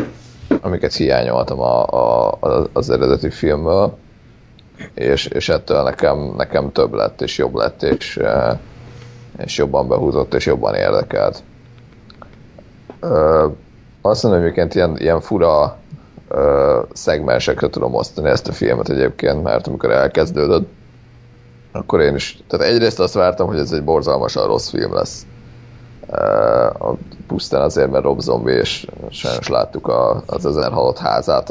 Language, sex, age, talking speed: Hungarian, male, 30-49, 130 wpm